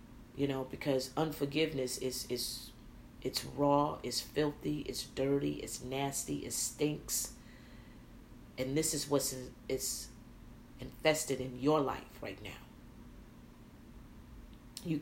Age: 40-59